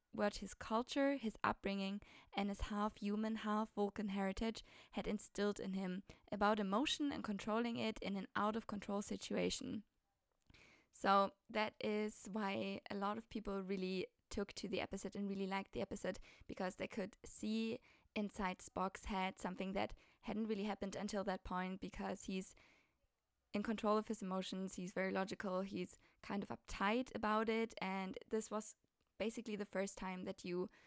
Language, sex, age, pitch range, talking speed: English, female, 20-39, 190-215 Hz, 155 wpm